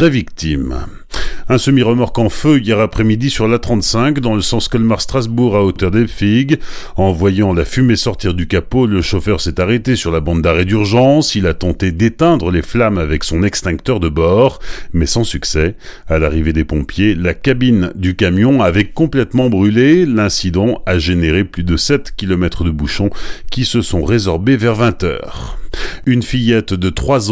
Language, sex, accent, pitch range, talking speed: French, male, French, 85-115 Hz, 175 wpm